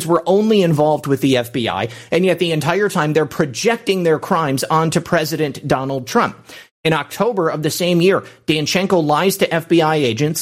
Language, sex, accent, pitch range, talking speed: English, male, American, 145-180 Hz, 175 wpm